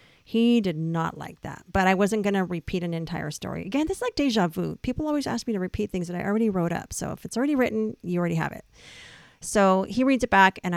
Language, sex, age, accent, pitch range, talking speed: English, female, 40-59, American, 165-220 Hz, 260 wpm